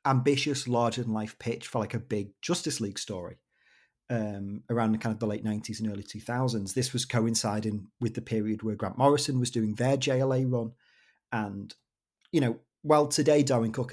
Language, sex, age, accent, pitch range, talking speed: English, male, 30-49, British, 110-140 Hz, 185 wpm